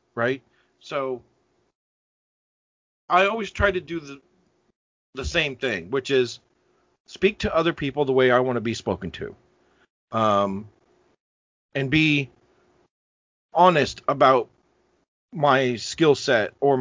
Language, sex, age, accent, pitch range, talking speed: English, male, 40-59, American, 120-160 Hz, 120 wpm